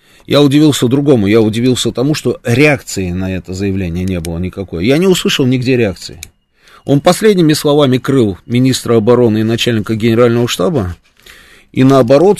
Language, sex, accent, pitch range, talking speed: Russian, male, native, 100-130 Hz, 150 wpm